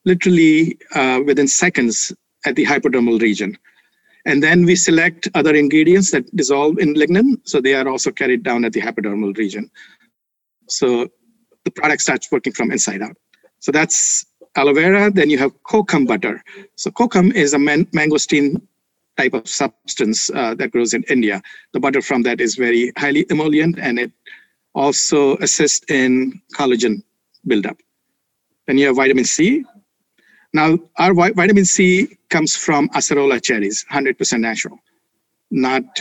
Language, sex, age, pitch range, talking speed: English, male, 50-69, 130-180 Hz, 150 wpm